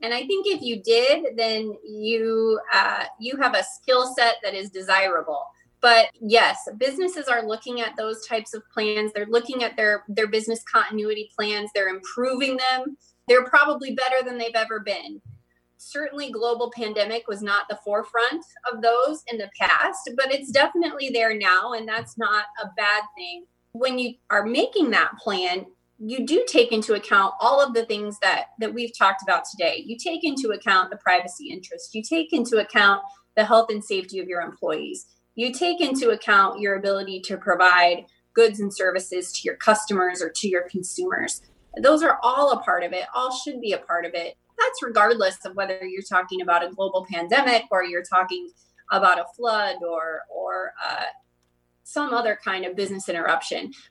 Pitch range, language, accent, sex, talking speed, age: 195-255 Hz, English, American, female, 185 wpm, 30-49